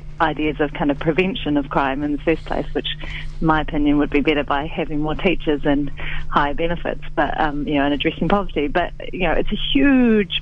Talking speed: 220 wpm